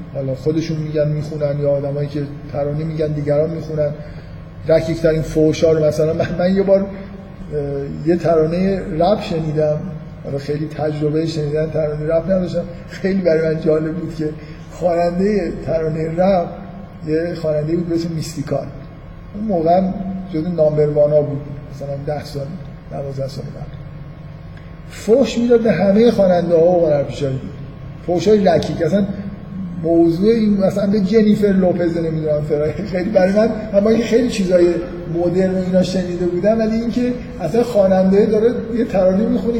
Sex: male